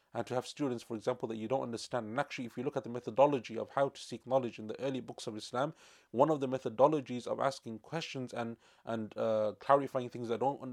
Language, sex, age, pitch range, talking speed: English, male, 30-49, 115-140 Hz, 240 wpm